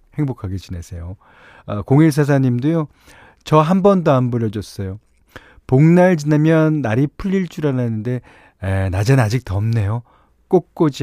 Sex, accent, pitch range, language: male, native, 105-155 Hz, Korean